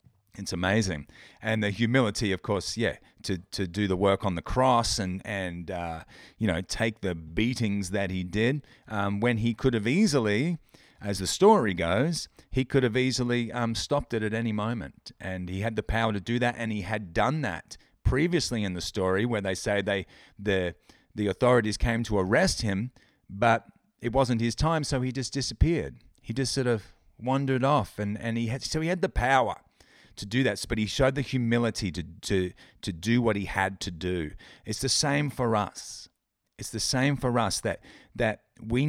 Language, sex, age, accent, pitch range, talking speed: English, male, 30-49, Australian, 100-125 Hz, 200 wpm